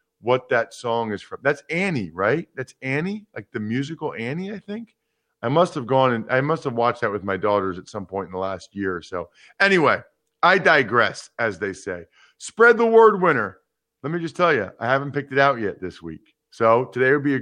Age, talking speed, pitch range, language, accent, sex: 40-59, 225 wpm, 120-160 Hz, English, American, male